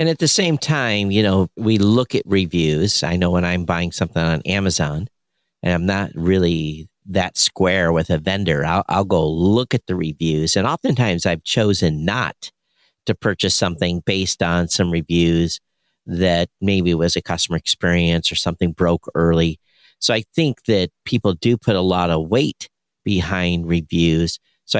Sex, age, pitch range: male, 50-69, 85-100 Hz